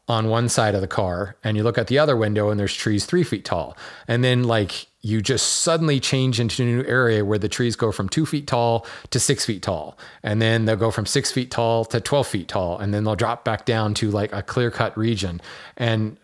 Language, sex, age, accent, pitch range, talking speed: English, male, 30-49, American, 105-125 Hz, 250 wpm